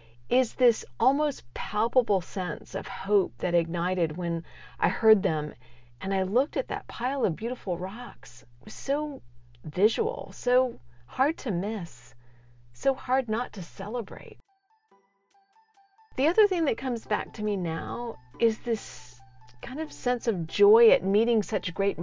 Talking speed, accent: 150 wpm, American